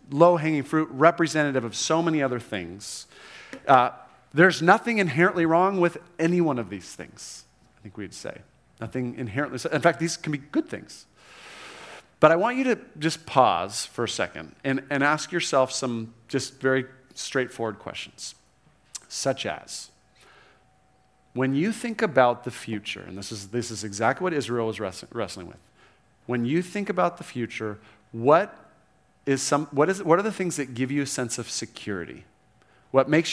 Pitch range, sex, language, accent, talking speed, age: 120-165 Hz, male, English, American, 175 wpm, 40-59